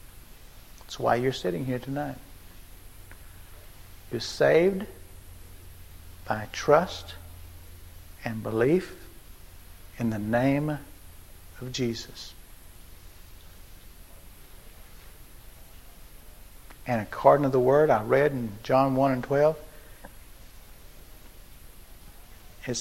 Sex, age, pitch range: male, 60-79, 90-130 Hz